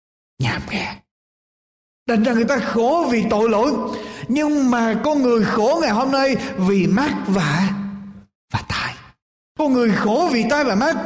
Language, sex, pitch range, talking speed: Vietnamese, male, 175-245 Hz, 165 wpm